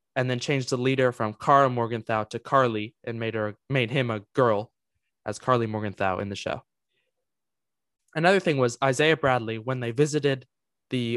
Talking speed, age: 170 wpm, 20-39